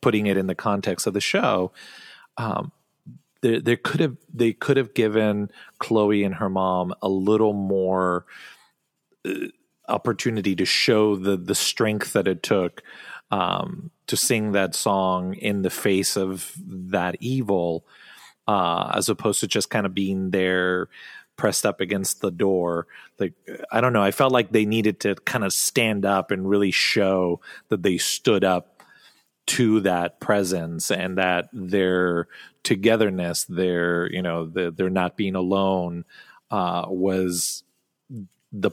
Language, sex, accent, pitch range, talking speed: English, male, American, 90-105 Hz, 150 wpm